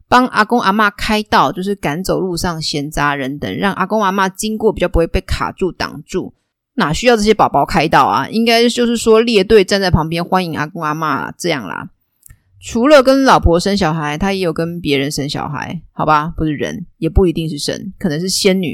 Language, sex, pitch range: Chinese, female, 155-210 Hz